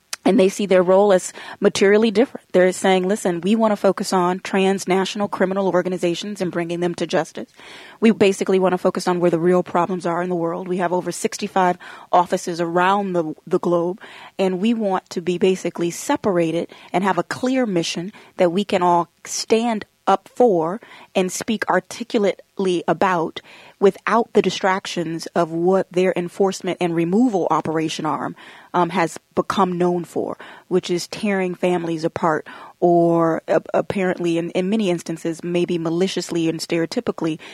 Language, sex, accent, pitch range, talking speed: English, female, American, 170-195 Hz, 165 wpm